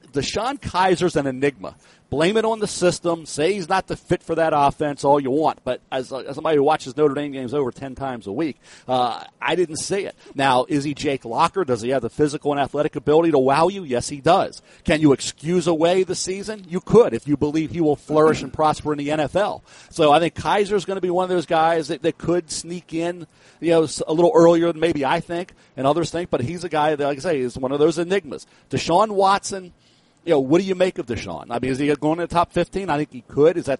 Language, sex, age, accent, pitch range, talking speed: English, male, 40-59, American, 140-170 Hz, 255 wpm